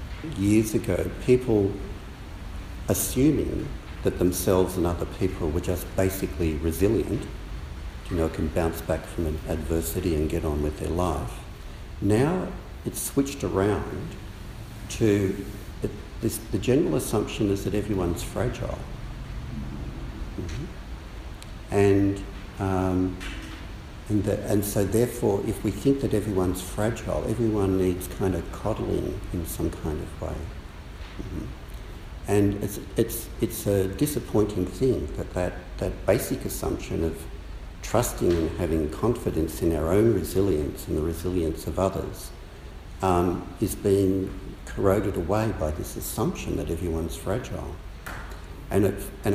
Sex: male